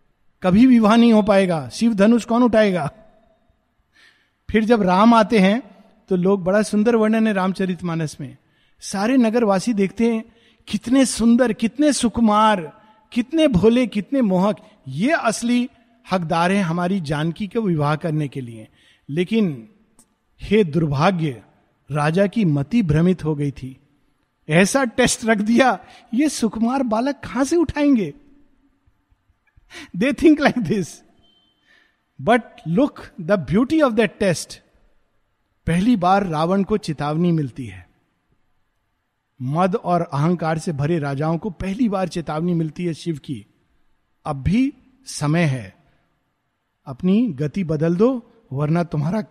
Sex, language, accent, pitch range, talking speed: male, Hindi, native, 160-230 Hz, 130 wpm